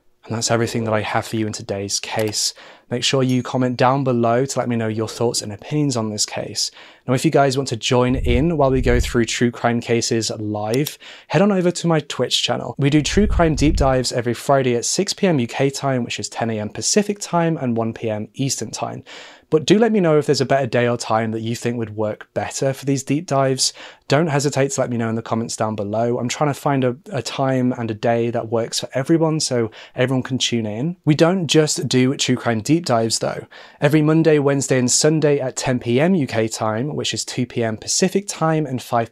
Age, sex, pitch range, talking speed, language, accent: 20-39, male, 115-150 Hz, 235 wpm, English, British